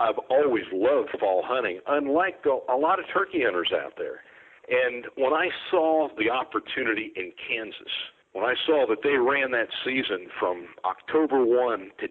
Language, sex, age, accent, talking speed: English, male, 50-69, American, 165 wpm